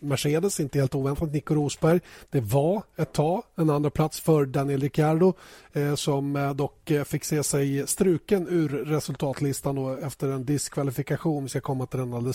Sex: male